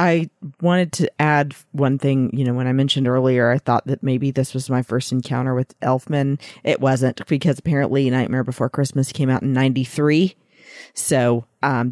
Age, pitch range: 40-59, 125-145 Hz